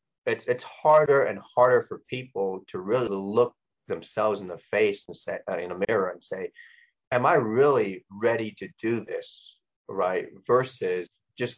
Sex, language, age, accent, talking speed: male, English, 30-49, American, 160 wpm